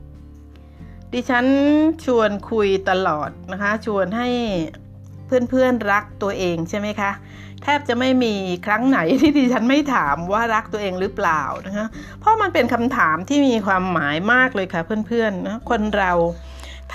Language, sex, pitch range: Thai, female, 175-240 Hz